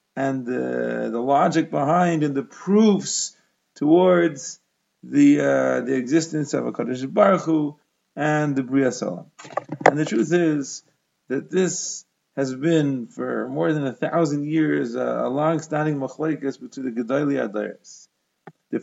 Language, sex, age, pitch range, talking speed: English, male, 40-59, 135-165 Hz, 140 wpm